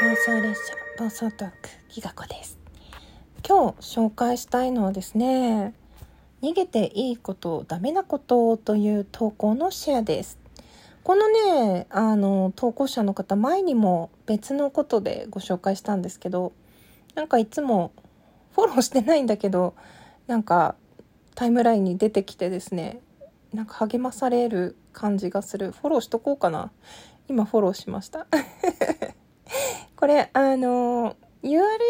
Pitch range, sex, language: 205-270 Hz, female, Japanese